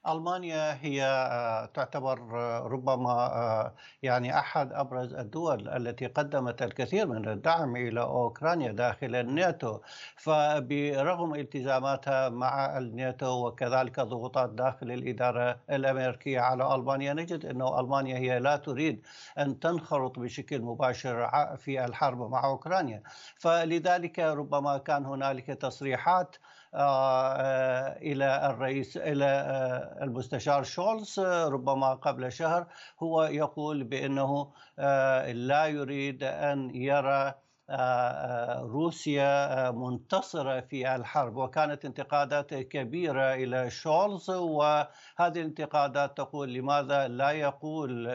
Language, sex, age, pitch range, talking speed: Arabic, male, 60-79, 130-150 Hz, 95 wpm